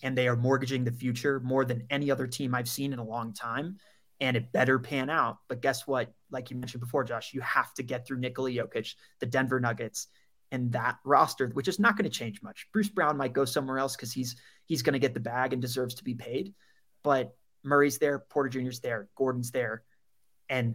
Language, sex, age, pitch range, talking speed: English, male, 30-49, 125-140 Hz, 225 wpm